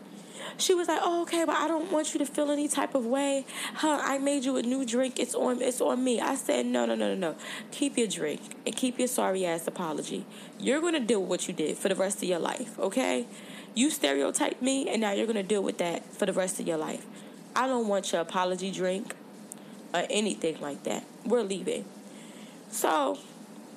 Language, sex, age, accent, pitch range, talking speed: English, female, 10-29, American, 210-275 Hz, 220 wpm